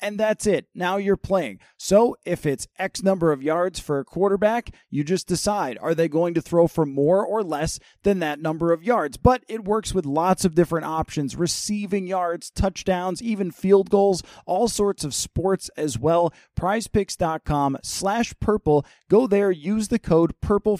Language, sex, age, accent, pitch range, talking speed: English, male, 30-49, American, 150-200 Hz, 175 wpm